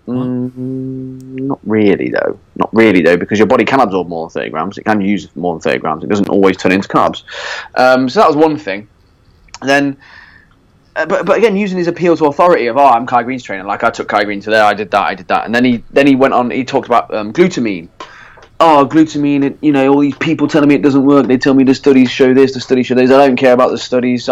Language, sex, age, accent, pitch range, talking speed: English, male, 30-49, British, 110-145 Hz, 265 wpm